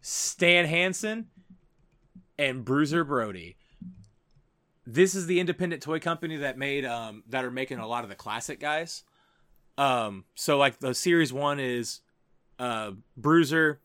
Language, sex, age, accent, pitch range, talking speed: English, male, 20-39, American, 125-160 Hz, 140 wpm